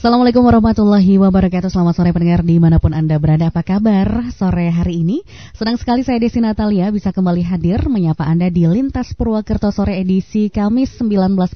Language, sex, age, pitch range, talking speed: Indonesian, female, 20-39, 175-220 Hz, 160 wpm